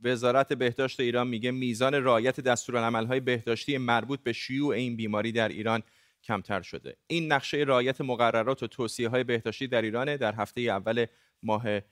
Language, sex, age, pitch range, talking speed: Persian, male, 30-49, 110-135 Hz, 155 wpm